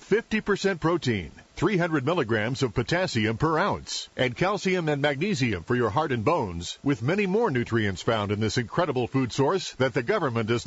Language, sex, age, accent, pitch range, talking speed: English, male, 50-69, American, 125-180 Hz, 170 wpm